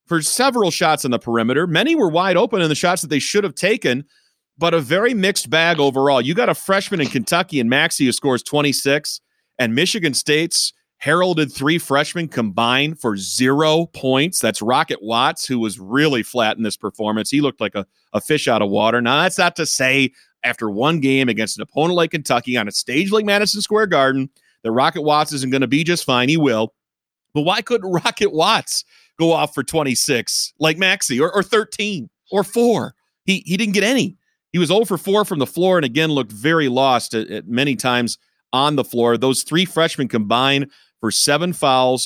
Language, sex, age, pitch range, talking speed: English, male, 30-49, 125-170 Hz, 205 wpm